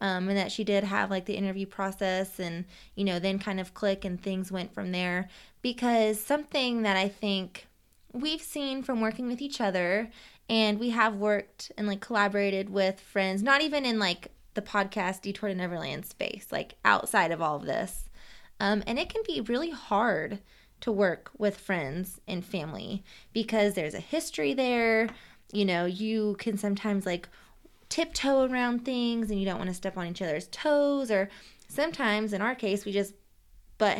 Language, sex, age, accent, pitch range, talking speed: English, female, 20-39, American, 195-235 Hz, 185 wpm